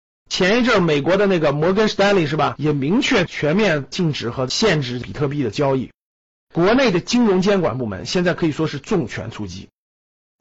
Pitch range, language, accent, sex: 150-215 Hz, Chinese, native, male